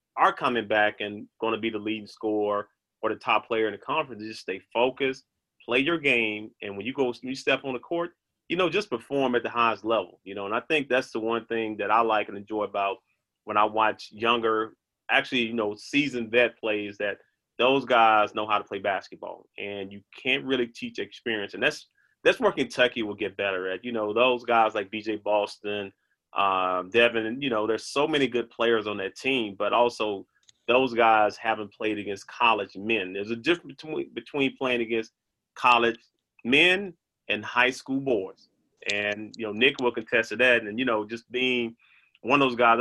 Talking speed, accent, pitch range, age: 205 wpm, American, 105-125 Hz, 30-49